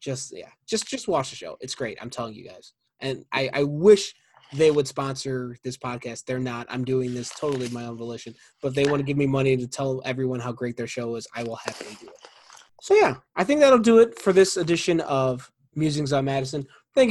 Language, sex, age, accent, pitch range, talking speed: English, male, 20-39, American, 135-180 Hz, 235 wpm